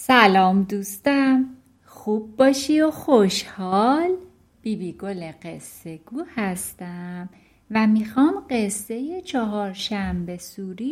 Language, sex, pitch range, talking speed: Persian, female, 195-275 Hz, 105 wpm